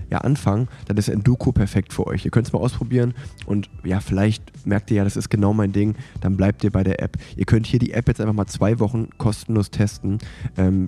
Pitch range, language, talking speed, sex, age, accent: 100-115 Hz, German, 235 wpm, male, 20-39, German